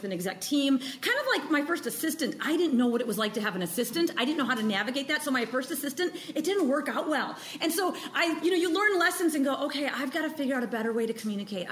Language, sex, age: English, female, 40-59